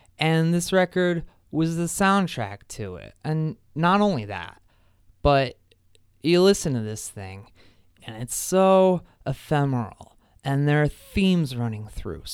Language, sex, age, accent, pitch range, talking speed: English, male, 20-39, American, 115-170 Hz, 135 wpm